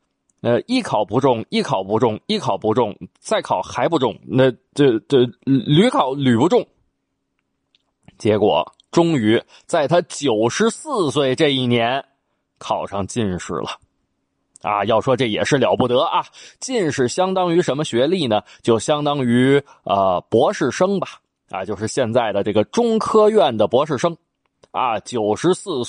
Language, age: Chinese, 20-39